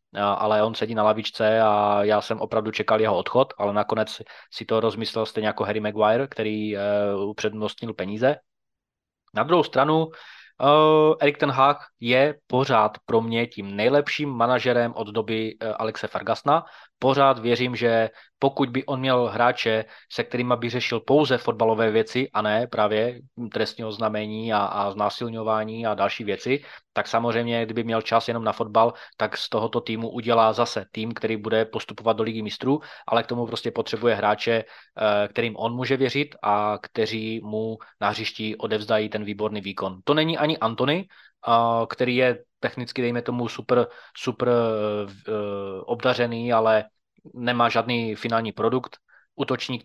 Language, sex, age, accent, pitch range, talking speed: Czech, male, 20-39, native, 110-125 Hz, 150 wpm